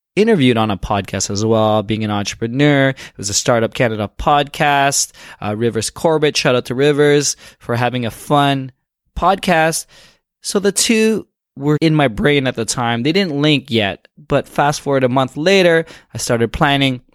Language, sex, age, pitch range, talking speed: English, male, 20-39, 115-150 Hz, 175 wpm